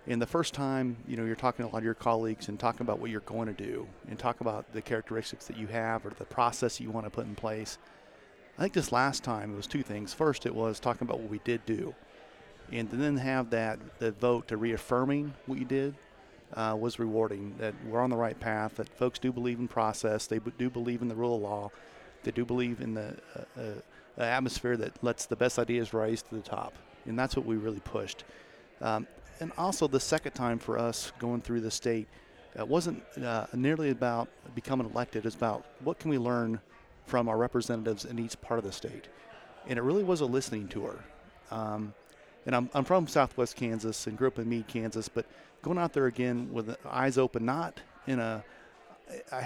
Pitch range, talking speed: 110-130 Hz, 225 wpm